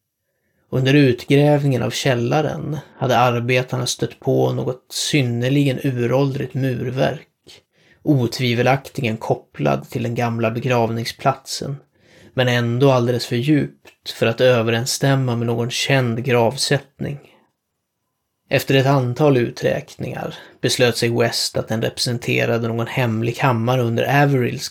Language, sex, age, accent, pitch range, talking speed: Swedish, male, 30-49, native, 115-135 Hz, 110 wpm